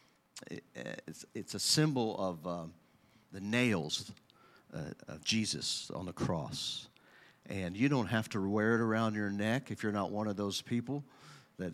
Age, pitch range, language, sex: 50-69, 90-115 Hz, English, male